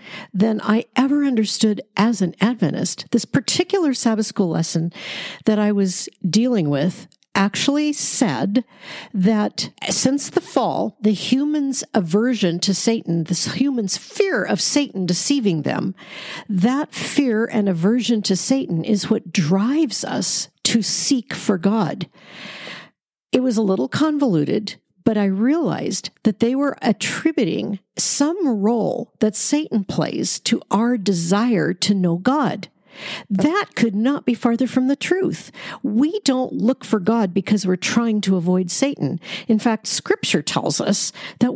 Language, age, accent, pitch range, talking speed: English, 50-69, American, 195-260 Hz, 140 wpm